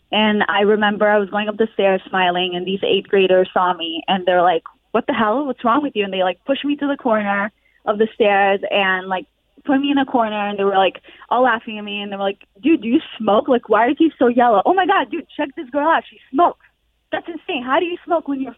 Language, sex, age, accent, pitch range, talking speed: English, female, 20-39, American, 200-265 Hz, 270 wpm